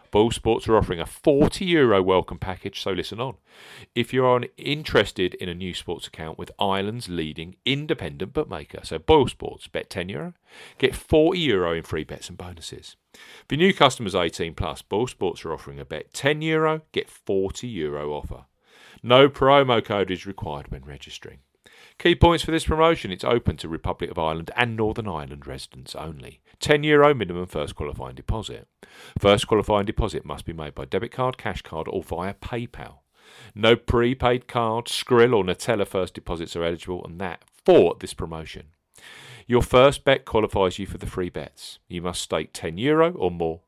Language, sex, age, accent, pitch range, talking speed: English, male, 40-59, British, 90-125 Hz, 175 wpm